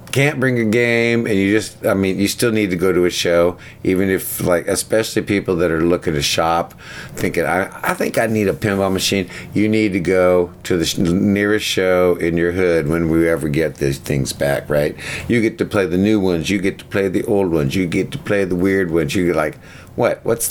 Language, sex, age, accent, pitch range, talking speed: English, male, 50-69, American, 85-105 Hz, 235 wpm